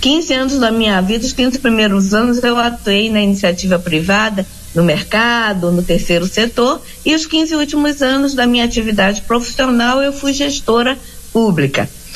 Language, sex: Portuguese, female